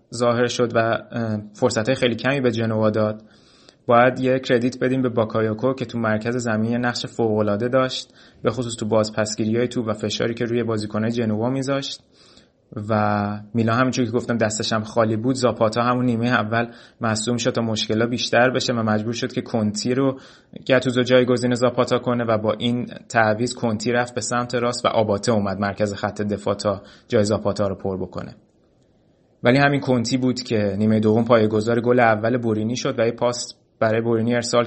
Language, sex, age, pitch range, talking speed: Persian, male, 20-39, 110-125 Hz, 175 wpm